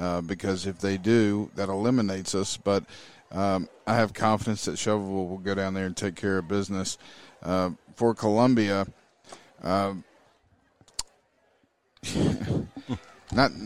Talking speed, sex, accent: 125 wpm, male, American